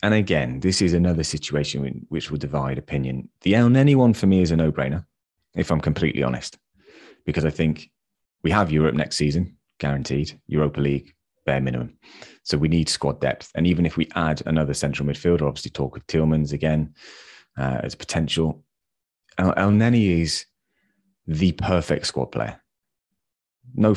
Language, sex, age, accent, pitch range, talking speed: English, male, 30-49, British, 75-90 Hz, 160 wpm